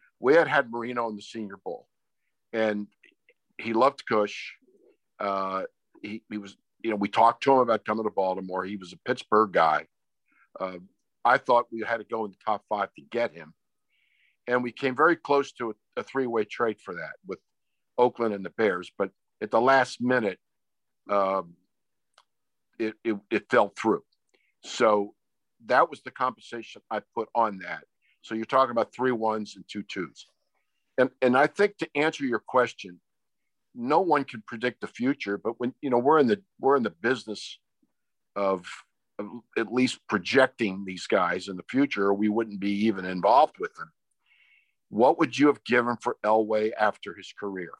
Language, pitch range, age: English, 100-125 Hz, 50-69